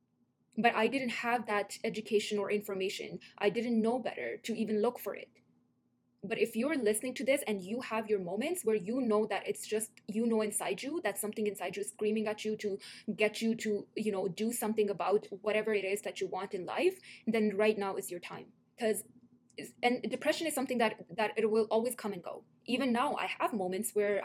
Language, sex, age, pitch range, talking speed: English, female, 20-39, 205-235 Hz, 220 wpm